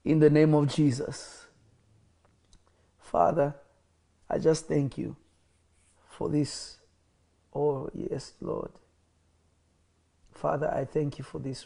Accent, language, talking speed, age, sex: South African, English, 110 wpm, 50-69, male